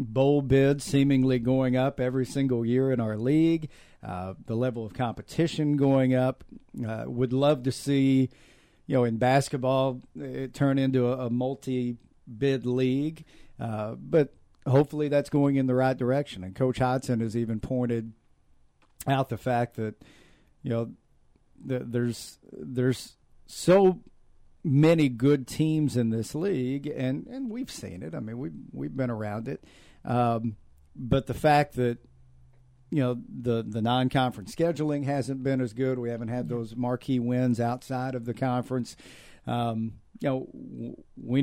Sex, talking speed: male, 160 wpm